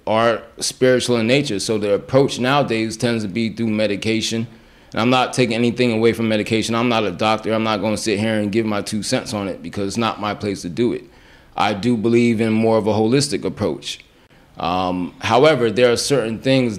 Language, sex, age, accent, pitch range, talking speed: English, male, 20-39, American, 105-125 Hz, 220 wpm